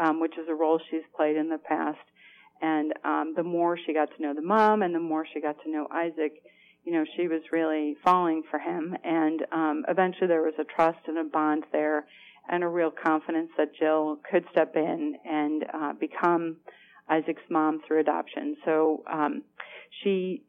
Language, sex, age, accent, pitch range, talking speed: English, female, 40-59, American, 160-180 Hz, 195 wpm